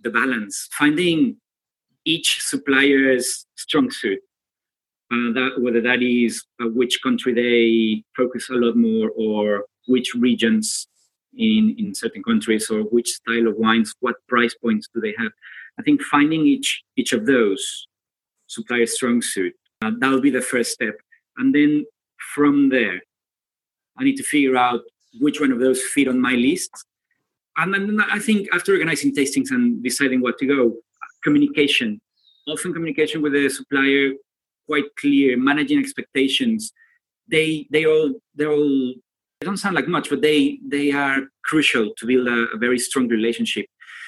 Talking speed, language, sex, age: 155 wpm, English, male, 30-49